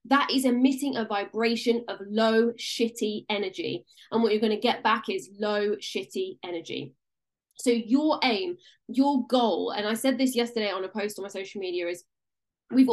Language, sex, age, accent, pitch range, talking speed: English, female, 10-29, British, 210-260 Hz, 175 wpm